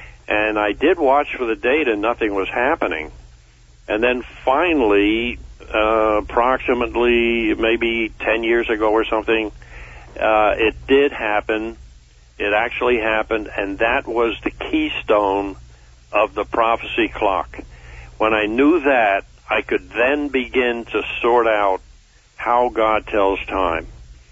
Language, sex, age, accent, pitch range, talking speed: English, male, 60-79, American, 95-115 Hz, 130 wpm